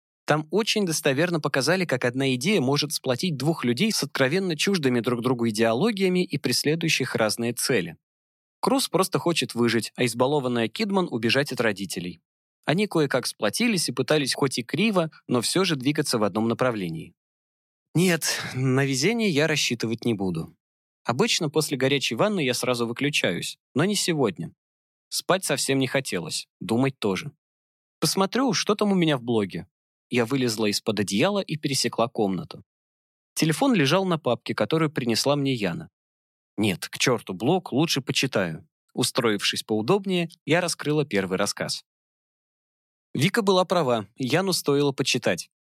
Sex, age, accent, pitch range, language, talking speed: male, 20-39, native, 115-160 Hz, Russian, 145 wpm